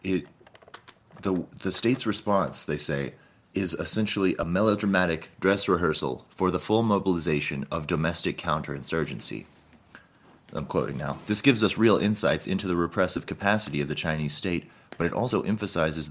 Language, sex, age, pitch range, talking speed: English, male, 30-49, 80-105 Hz, 150 wpm